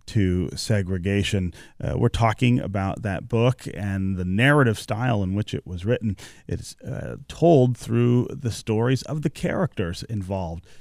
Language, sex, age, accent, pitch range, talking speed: English, male, 30-49, American, 95-125 Hz, 150 wpm